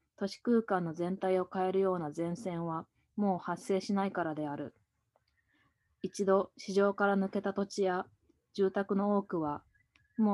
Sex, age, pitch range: female, 20-39, 160-195 Hz